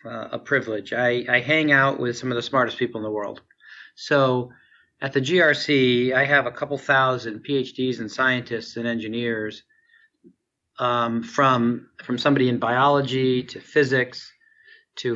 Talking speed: 155 wpm